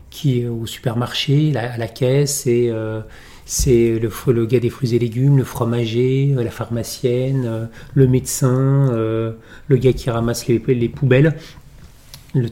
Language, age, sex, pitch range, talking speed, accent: French, 40-59, male, 115-140 Hz, 160 wpm, French